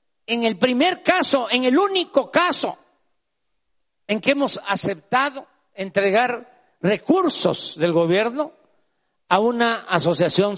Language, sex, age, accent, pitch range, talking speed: Spanish, male, 50-69, Mexican, 180-240 Hz, 110 wpm